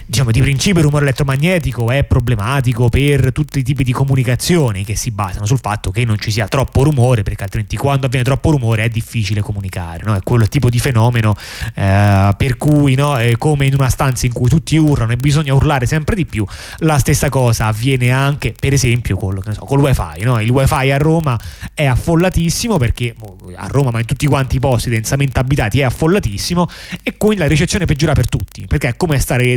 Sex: male